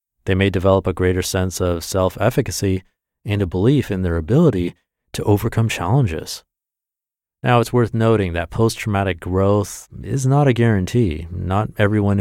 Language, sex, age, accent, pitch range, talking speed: English, male, 30-49, American, 90-115 Hz, 145 wpm